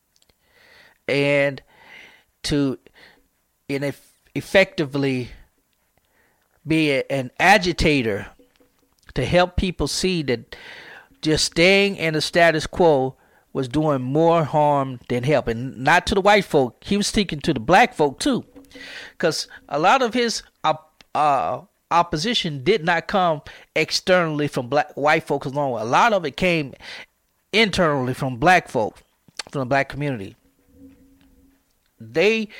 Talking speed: 135 wpm